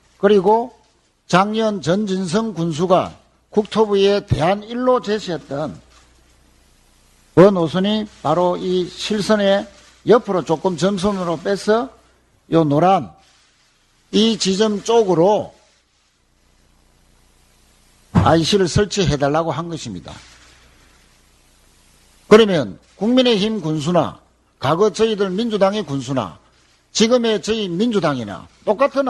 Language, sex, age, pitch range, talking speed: English, male, 50-69, 155-220 Hz, 75 wpm